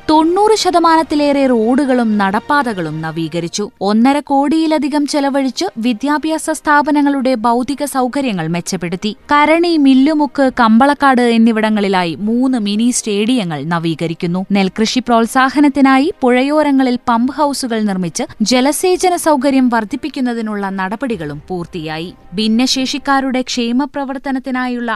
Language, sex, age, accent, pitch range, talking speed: Malayalam, female, 20-39, native, 210-280 Hz, 80 wpm